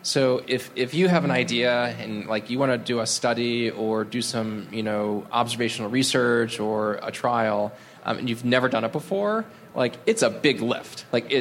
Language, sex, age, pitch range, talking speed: English, male, 20-39, 110-135 Hz, 200 wpm